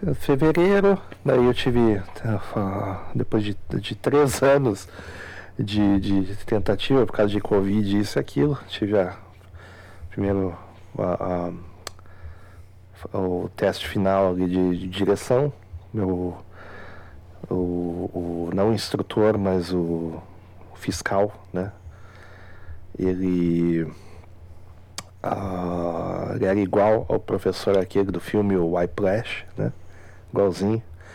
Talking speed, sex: 105 wpm, male